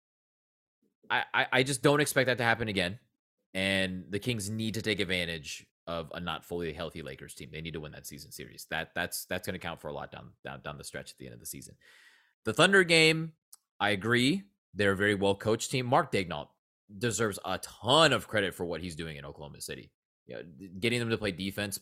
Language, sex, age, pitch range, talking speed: English, male, 20-39, 85-105 Hz, 225 wpm